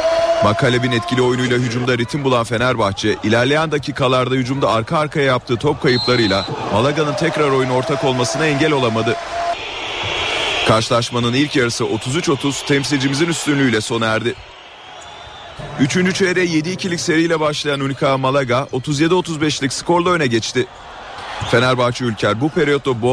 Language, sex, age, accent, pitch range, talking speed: Turkish, male, 40-59, native, 120-150 Hz, 120 wpm